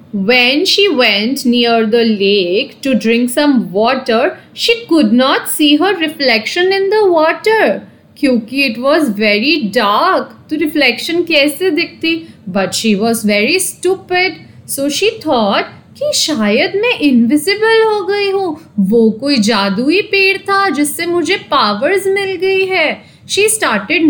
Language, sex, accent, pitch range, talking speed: English, female, Indian, 240-375 Hz, 105 wpm